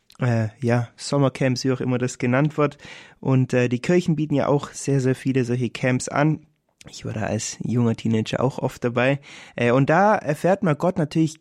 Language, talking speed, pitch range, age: German, 200 wpm, 120-150 Hz, 20-39